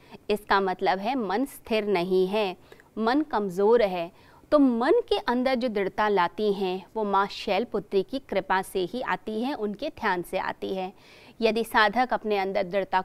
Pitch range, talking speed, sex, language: 195-270 Hz, 175 wpm, female, Hindi